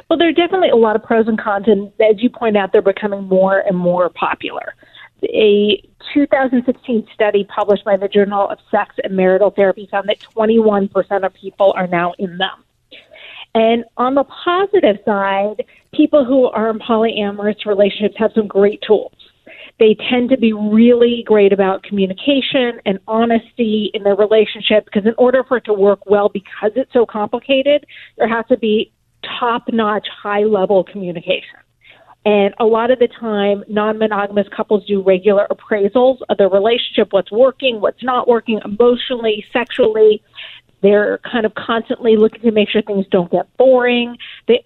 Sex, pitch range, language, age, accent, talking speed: female, 205-245 Hz, English, 40-59, American, 165 wpm